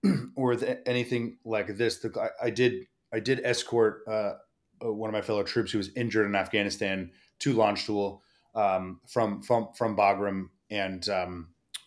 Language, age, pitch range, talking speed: English, 30-49, 95-115 Hz, 165 wpm